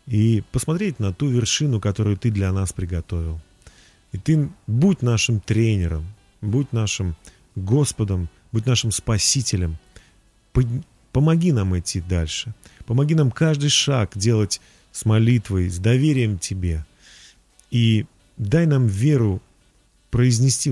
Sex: male